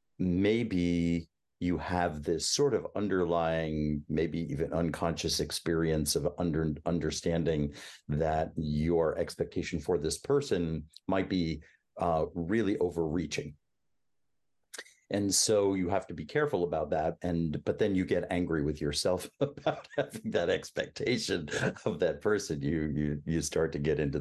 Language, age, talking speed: English, 50-69, 140 wpm